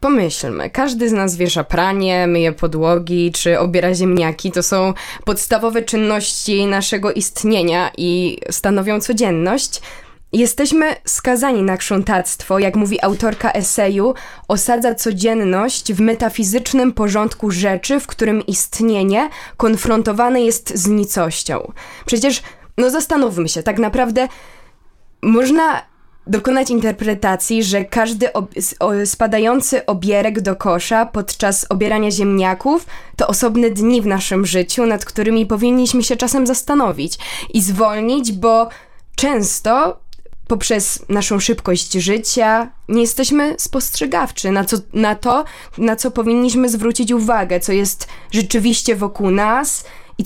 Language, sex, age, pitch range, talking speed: Polish, female, 20-39, 195-240 Hz, 115 wpm